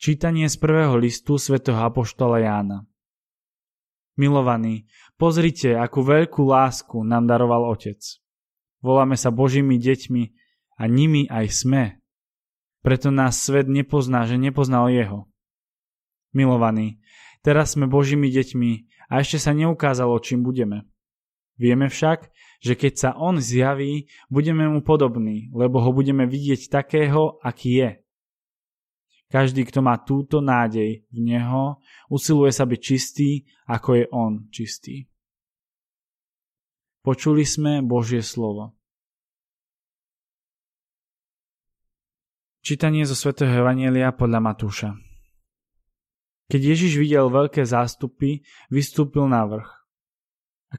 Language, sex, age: Slovak, male, 20-39